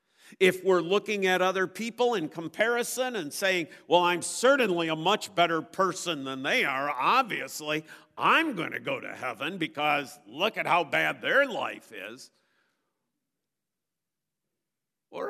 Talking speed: 140 wpm